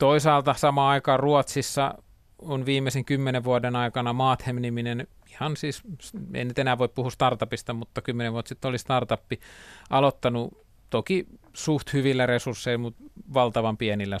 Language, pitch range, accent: Finnish, 110-130 Hz, native